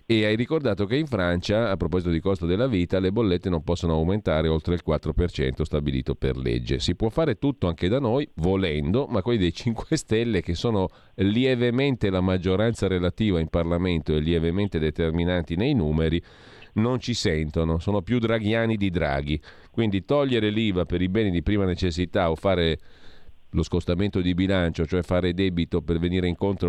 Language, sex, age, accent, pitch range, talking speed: Italian, male, 40-59, native, 85-105 Hz, 175 wpm